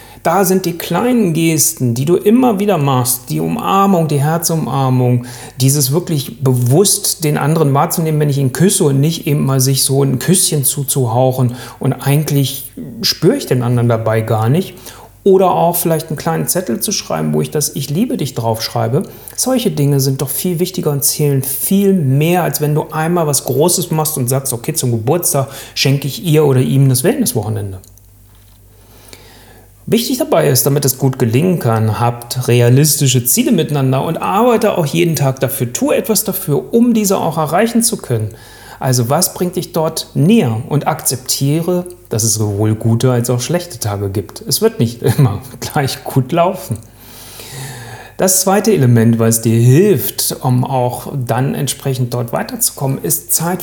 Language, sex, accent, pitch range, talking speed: German, male, German, 125-175 Hz, 165 wpm